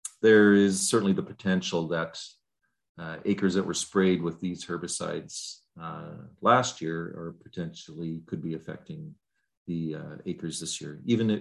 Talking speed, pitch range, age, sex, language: 145 wpm, 80-90 Hz, 40-59, male, English